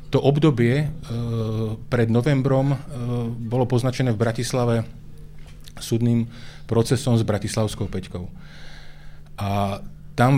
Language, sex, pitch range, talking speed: Slovak, male, 110-125 Hz, 100 wpm